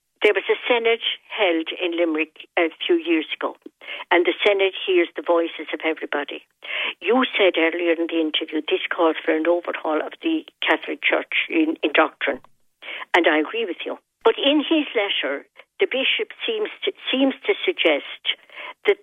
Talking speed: 165 wpm